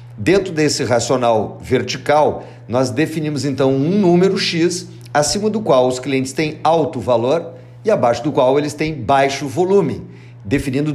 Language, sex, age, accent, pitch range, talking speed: Portuguese, male, 50-69, Brazilian, 125-165 Hz, 150 wpm